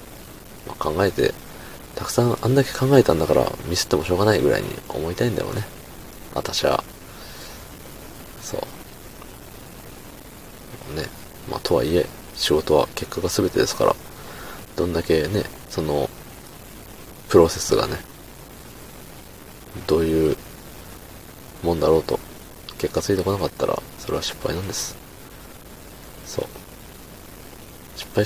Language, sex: Japanese, male